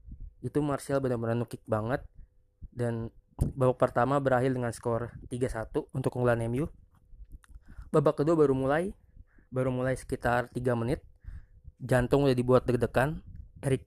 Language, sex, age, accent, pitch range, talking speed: Indonesian, male, 20-39, native, 120-135 Hz, 125 wpm